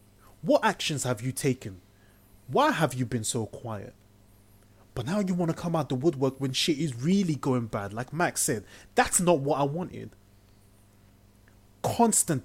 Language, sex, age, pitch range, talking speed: English, male, 20-39, 105-155 Hz, 170 wpm